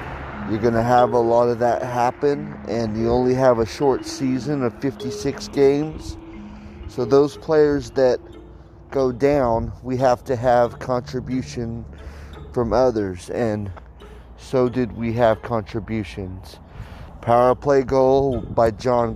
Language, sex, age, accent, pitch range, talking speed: English, male, 30-49, American, 105-135 Hz, 135 wpm